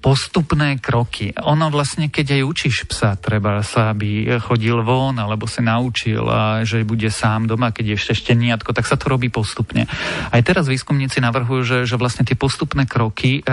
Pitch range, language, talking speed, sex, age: 110-130 Hz, Slovak, 175 wpm, male, 40-59